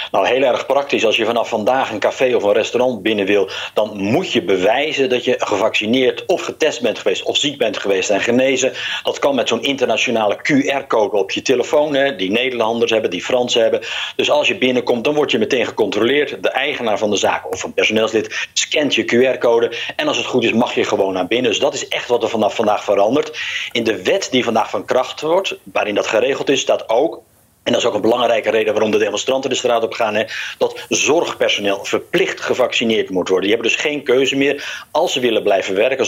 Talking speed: 220 wpm